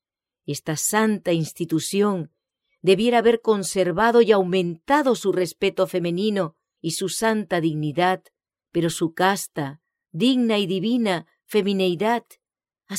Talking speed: 105 wpm